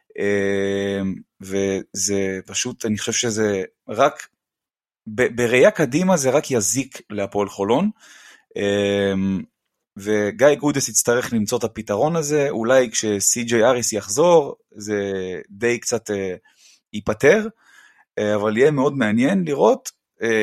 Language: Hebrew